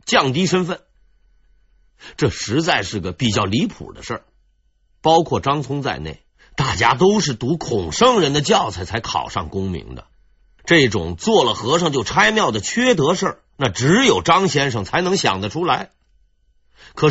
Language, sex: Chinese, male